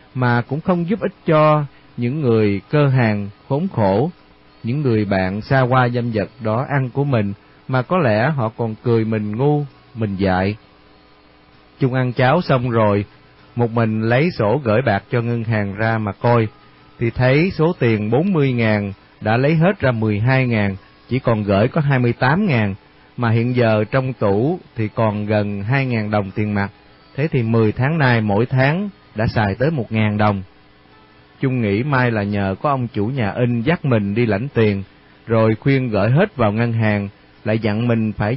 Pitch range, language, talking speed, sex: 105-135 Hz, Vietnamese, 190 wpm, male